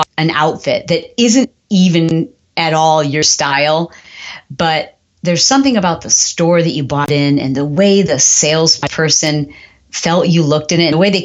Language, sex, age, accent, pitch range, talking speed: English, female, 40-59, American, 155-210 Hz, 175 wpm